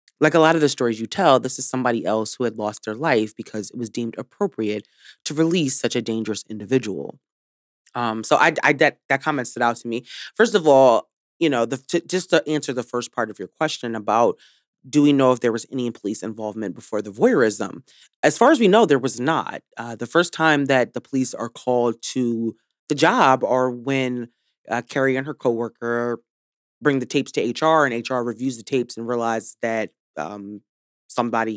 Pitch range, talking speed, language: 115-140 Hz, 215 wpm, English